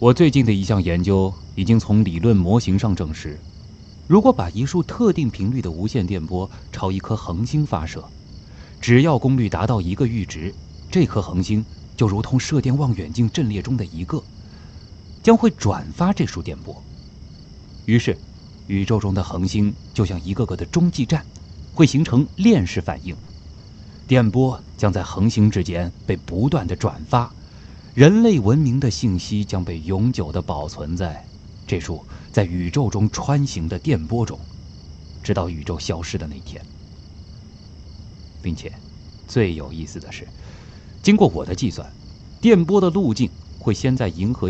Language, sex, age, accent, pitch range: Chinese, male, 30-49, native, 90-125 Hz